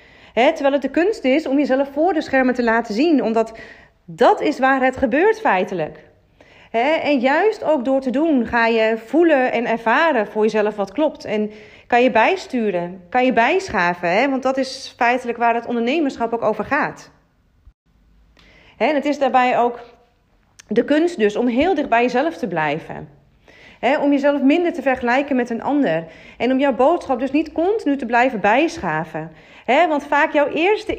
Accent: Dutch